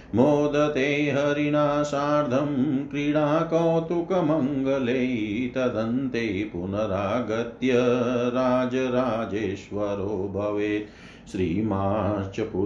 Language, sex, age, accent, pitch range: Hindi, male, 50-69, native, 105-130 Hz